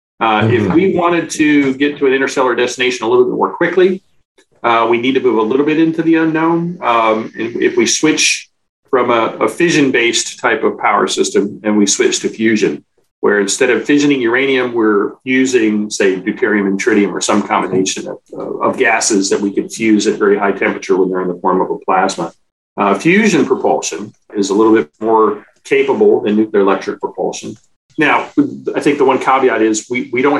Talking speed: 200 wpm